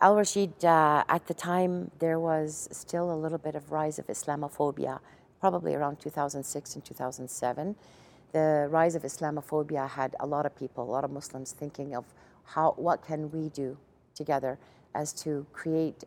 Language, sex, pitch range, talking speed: English, female, 145-170 Hz, 165 wpm